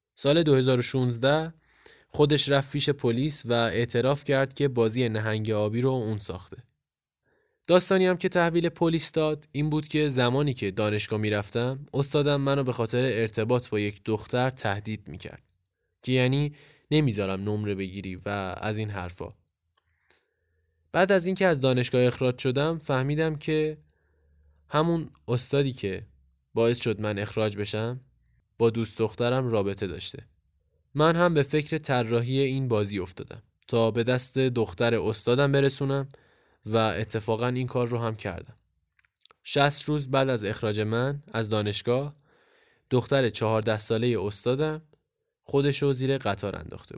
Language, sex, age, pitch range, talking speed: Persian, male, 10-29, 105-140 Hz, 135 wpm